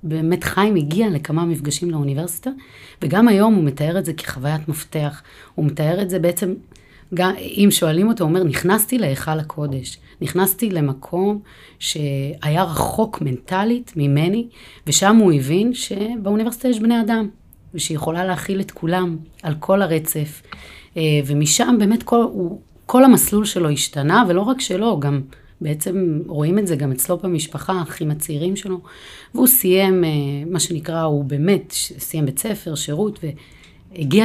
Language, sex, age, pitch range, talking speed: Hebrew, female, 30-49, 155-195 Hz, 140 wpm